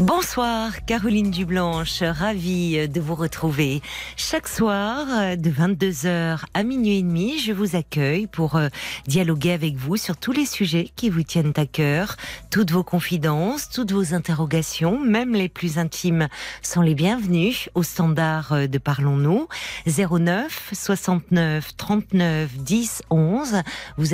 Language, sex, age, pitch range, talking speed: French, female, 40-59, 150-190 Hz, 135 wpm